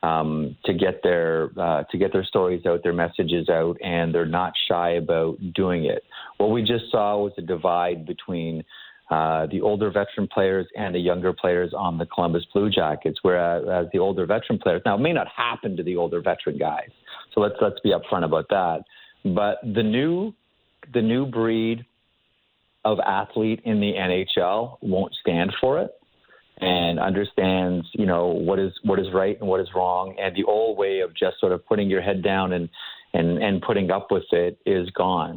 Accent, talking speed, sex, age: American, 190 wpm, male, 40-59